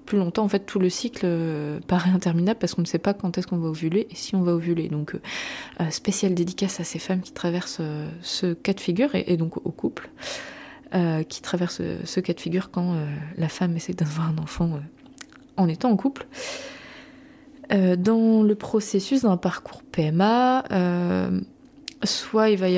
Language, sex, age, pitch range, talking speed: French, female, 20-39, 175-215 Hz, 200 wpm